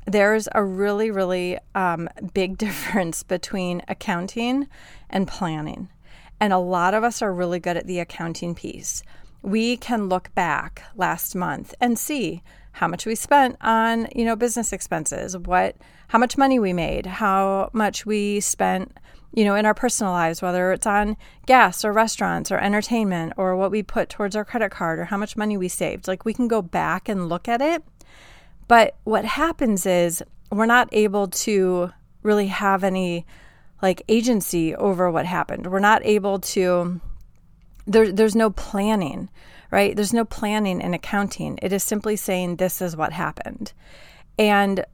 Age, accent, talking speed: 30-49, American, 170 wpm